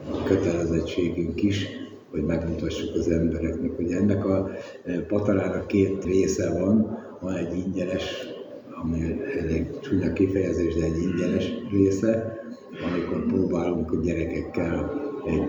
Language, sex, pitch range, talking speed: Hungarian, male, 85-95 Hz, 115 wpm